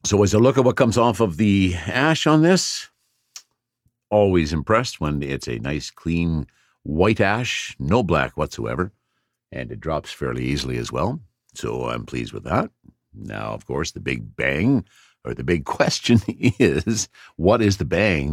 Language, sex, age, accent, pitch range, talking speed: English, male, 60-79, American, 80-120 Hz, 170 wpm